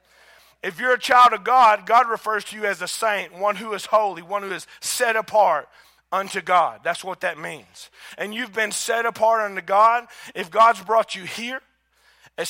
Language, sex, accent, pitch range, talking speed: English, male, American, 185-225 Hz, 195 wpm